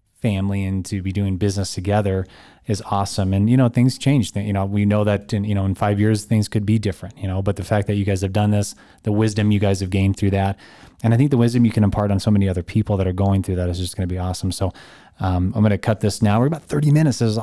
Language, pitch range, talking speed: English, 100-115 Hz, 295 wpm